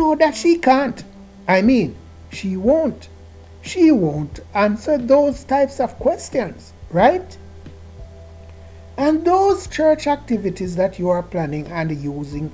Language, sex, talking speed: English, male, 120 wpm